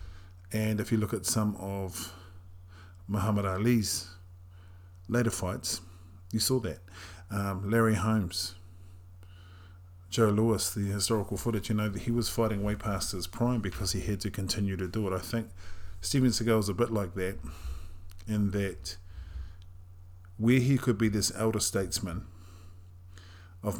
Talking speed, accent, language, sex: 150 wpm, British, English, male